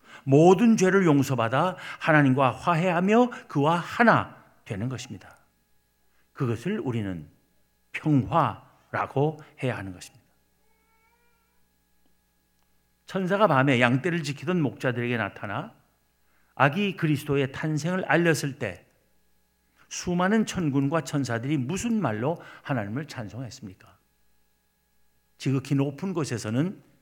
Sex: male